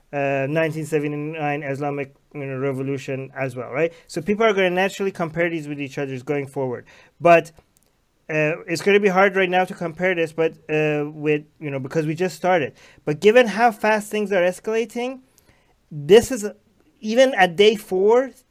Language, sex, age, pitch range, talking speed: English, male, 30-49, 160-210 Hz, 175 wpm